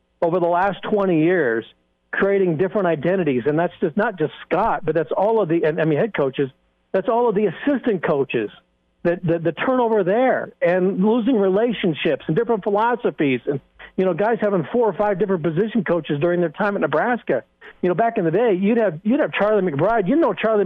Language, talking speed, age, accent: English, 210 wpm, 60-79, American